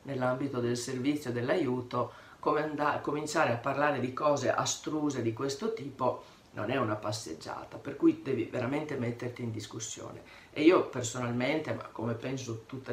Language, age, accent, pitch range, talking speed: Italian, 40-59, native, 120-145 Hz, 150 wpm